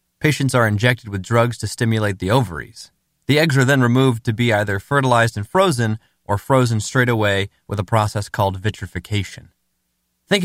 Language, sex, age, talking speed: English, male, 20-39, 170 wpm